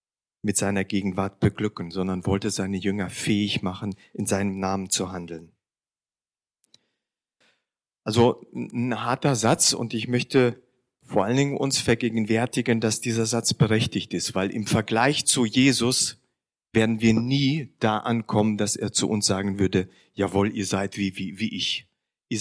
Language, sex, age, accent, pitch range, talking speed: German, male, 40-59, German, 100-125 Hz, 150 wpm